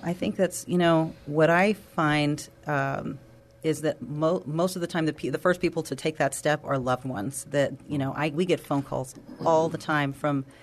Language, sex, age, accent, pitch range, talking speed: English, female, 40-59, American, 140-165 Hz, 225 wpm